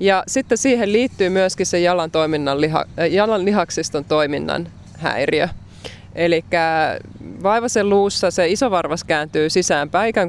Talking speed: 120 wpm